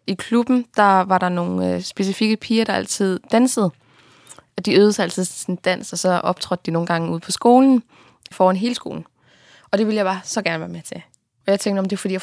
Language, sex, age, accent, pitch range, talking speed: Danish, female, 20-39, native, 170-200 Hz, 240 wpm